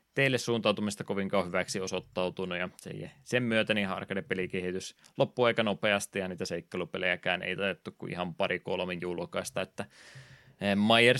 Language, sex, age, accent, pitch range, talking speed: Finnish, male, 20-39, native, 90-110 Hz, 135 wpm